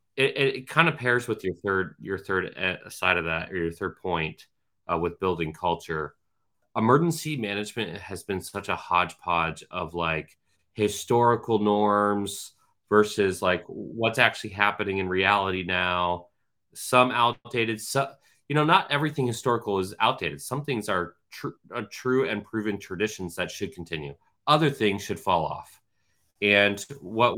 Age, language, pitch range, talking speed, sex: 30-49, English, 90-120 Hz, 155 wpm, male